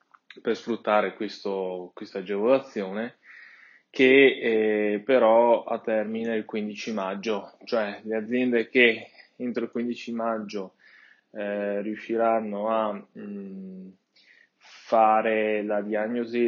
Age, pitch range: 20-39, 105-120 Hz